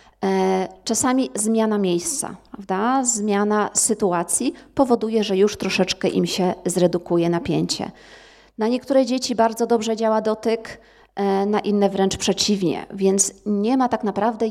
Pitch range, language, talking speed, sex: 190-240 Hz, Polish, 125 wpm, female